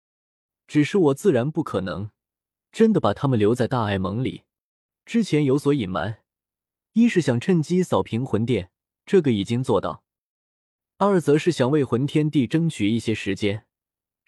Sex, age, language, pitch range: male, 20-39, Chinese, 110-165 Hz